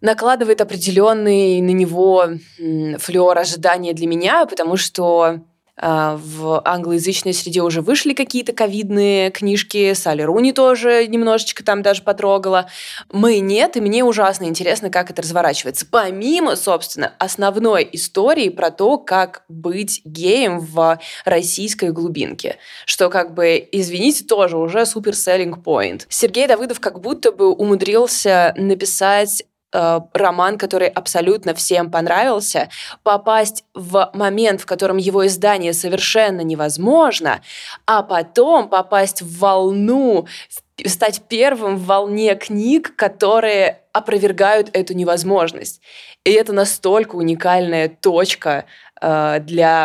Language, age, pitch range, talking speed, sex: Russian, 20-39, 175-215 Hz, 115 wpm, female